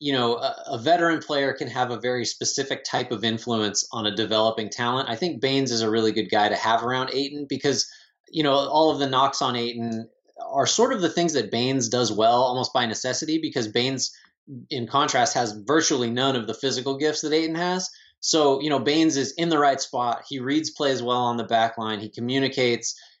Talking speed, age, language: 220 wpm, 20-39, English